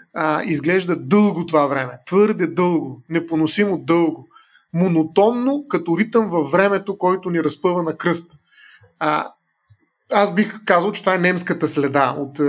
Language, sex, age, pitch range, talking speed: Bulgarian, male, 30-49, 150-190 Hz, 135 wpm